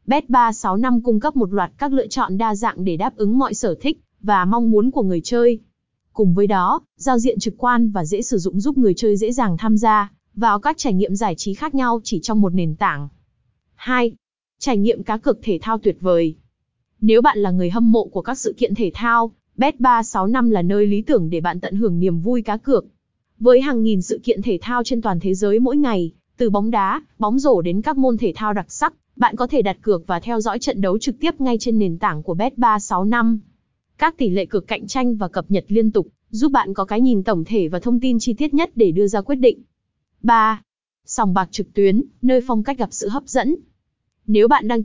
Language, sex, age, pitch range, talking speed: Vietnamese, female, 20-39, 200-245 Hz, 235 wpm